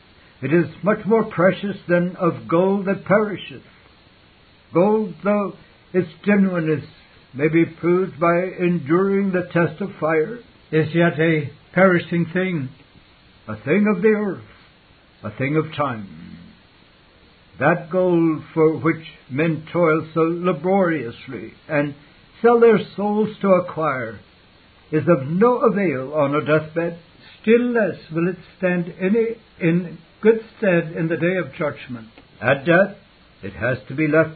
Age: 60-79